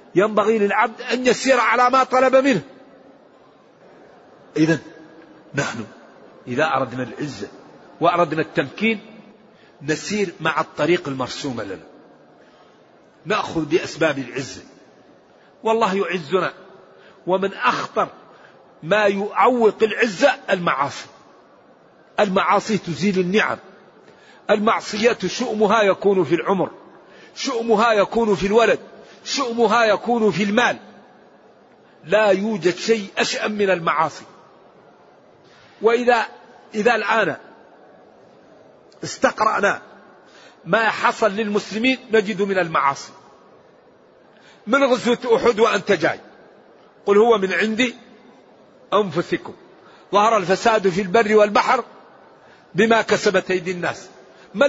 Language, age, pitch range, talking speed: Arabic, 50-69, 185-230 Hz, 90 wpm